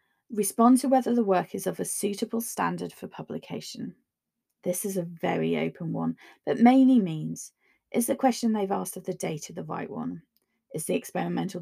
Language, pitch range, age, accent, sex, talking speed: English, 170-235 Hz, 30-49, British, female, 180 wpm